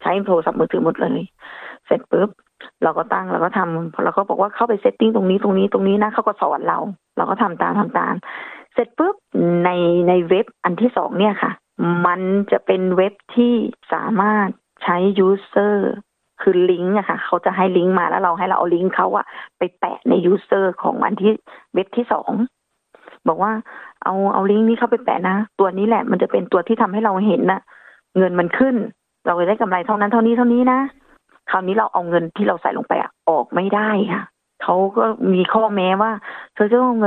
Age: 20-39